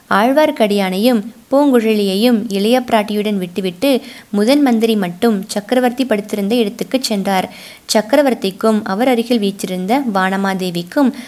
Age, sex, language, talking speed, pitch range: 20-39, female, Tamil, 80 wpm, 210-250 Hz